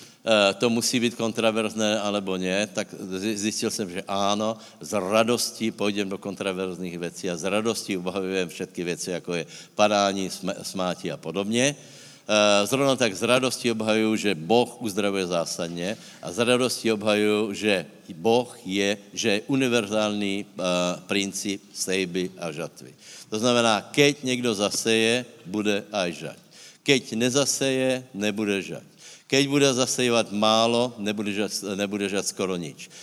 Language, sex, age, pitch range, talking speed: Slovak, male, 60-79, 95-115 Hz, 135 wpm